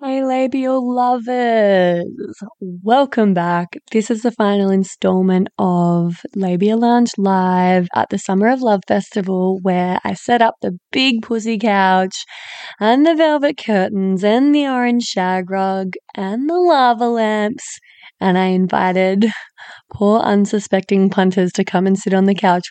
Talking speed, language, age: 145 wpm, English, 20-39